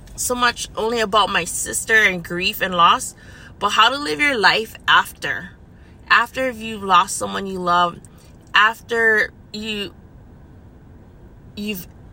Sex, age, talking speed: female, 20-39, 130 wpm